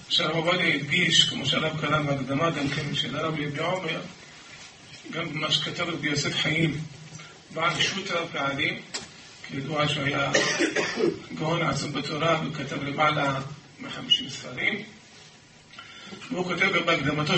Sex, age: male, 40-59